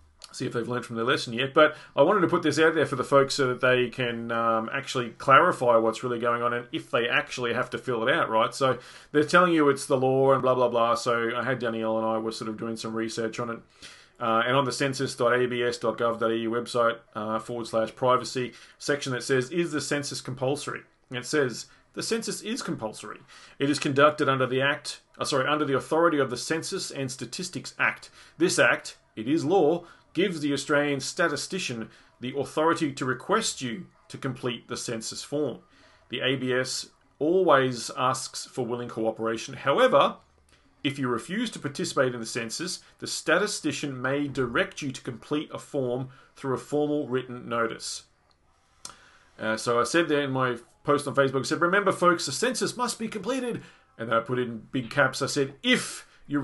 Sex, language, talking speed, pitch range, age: male, English, 195 wpm, 120-150 Hz, 30-49